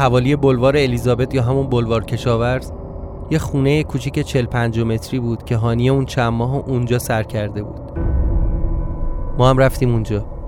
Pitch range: 115-135 Hz